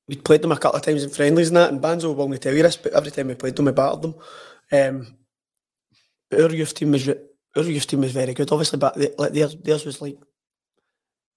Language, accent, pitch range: English, British, 140-155 Hz